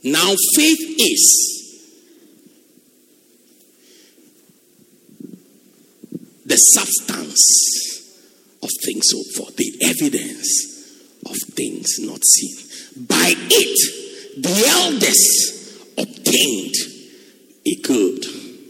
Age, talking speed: 50-69, 70 wpm